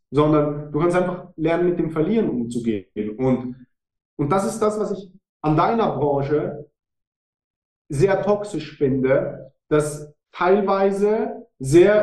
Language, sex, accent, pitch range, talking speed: German, male, German, 130-175 Hz, 125 wpm